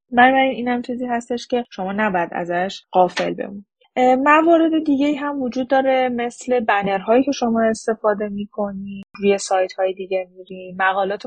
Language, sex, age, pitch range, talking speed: Persian, female, 10-29, 190-245 Hz, 145 wpm